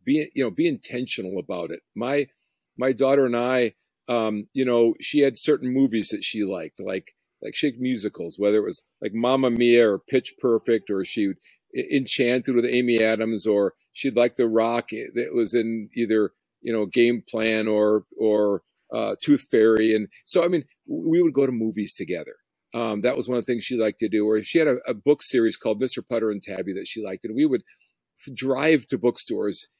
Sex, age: male, 50-69